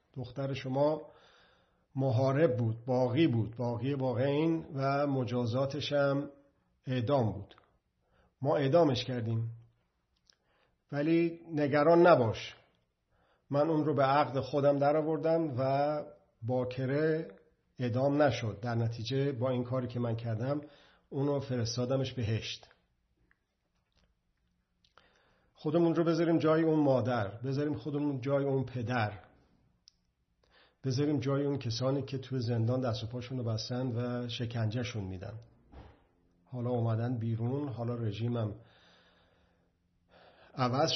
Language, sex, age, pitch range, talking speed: Persian, male, 50-69, 110-145 Hz, 110 wpm